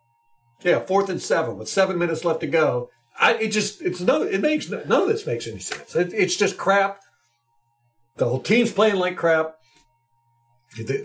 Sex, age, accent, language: male, 50-69, American, English